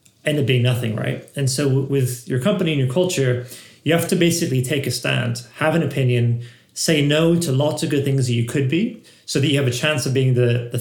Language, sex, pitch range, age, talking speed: English, male, 120-145 Hz, 30-49, 250 wpm